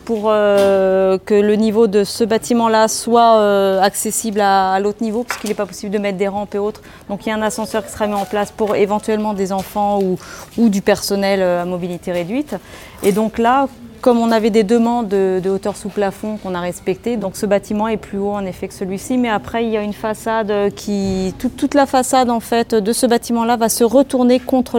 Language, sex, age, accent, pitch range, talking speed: French, female, 30-49, French, 190-220 Hz, 230 wpm